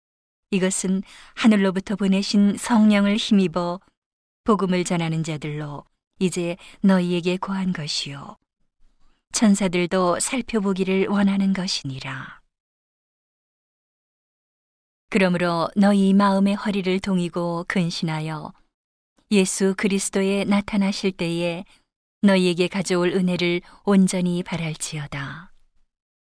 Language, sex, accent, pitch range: Korean, female, native, 175-200 Hz